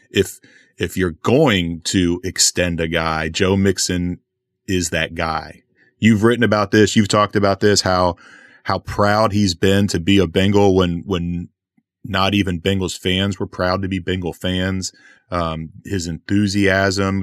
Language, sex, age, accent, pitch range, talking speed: English, male, 30-49, American, 90-105 Hz, 155 wpm